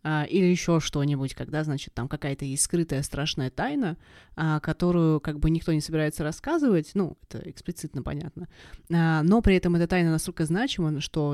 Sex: female